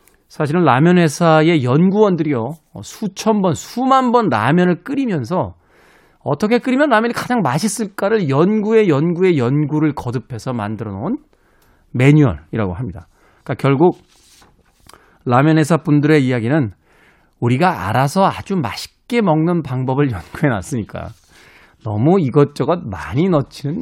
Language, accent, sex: Korean, native, male